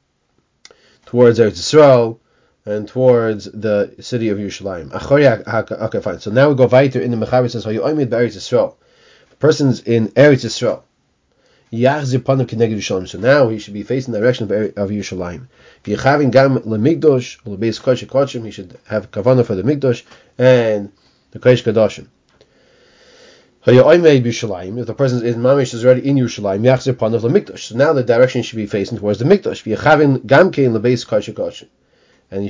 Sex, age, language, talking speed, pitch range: male, 30-49, English, 130 wpm, 110-135 Hz